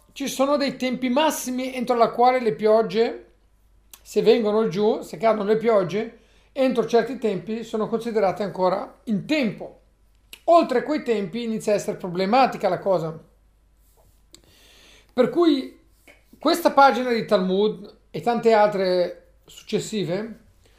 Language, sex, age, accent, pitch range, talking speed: Italian, male, 40-59, native, 195-245 Hz, 130 wpm